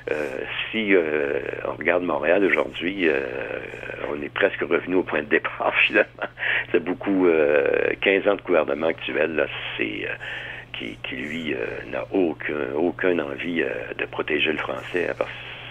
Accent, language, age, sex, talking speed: French, French, 60-79, male, 160 wpm